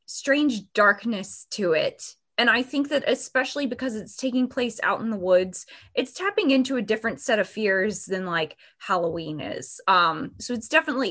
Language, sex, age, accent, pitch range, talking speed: English, female, 20-39, American, 195-255 Hz, 180 wpm